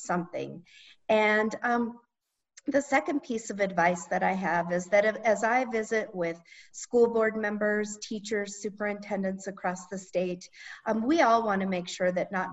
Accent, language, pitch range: American, English, 185-220 Hz